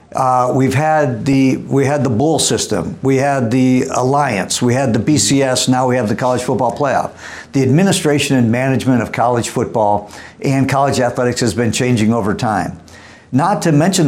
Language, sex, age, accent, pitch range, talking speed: English, male, 50-69, American, 120-140 Hz, 180 wpm